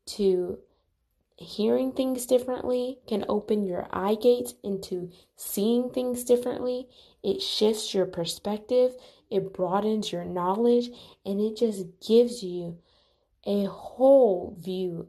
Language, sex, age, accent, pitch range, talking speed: English, female, 20-39, American, 185-230 Hz, 115 wpm